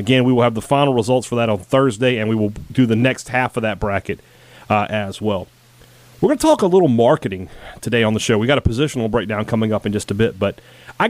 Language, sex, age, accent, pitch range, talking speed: English, male, 30-49, American, 115-145 Hz, 260 wpm